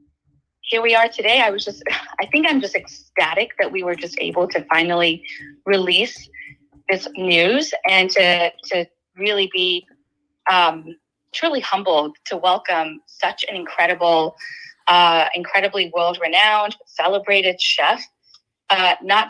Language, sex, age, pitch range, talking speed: English, female, 30-49, 165-205 Hz, 130 wpm